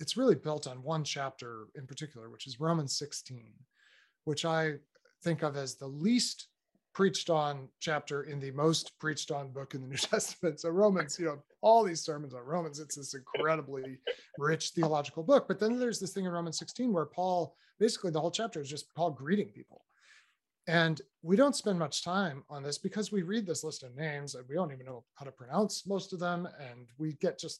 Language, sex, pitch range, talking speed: English, male, 140-185 Hz, 210 wpm